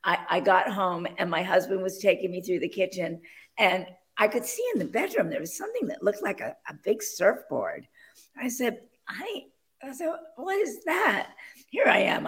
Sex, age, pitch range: female, 50-69, 195-300 Hz